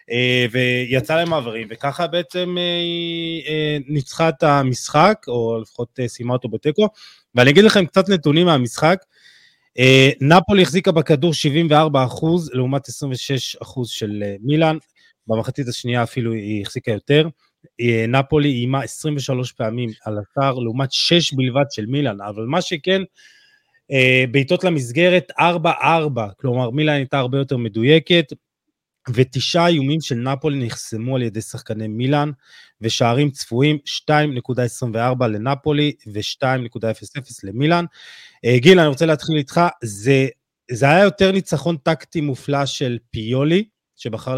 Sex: male